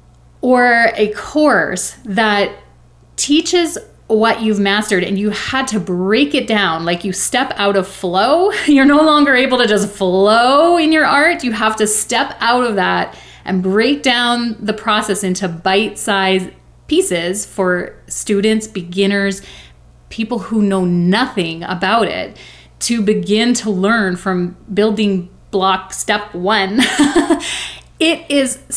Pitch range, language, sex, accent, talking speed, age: 190-245 Hz, English, female, American, 140 wpm, 30-49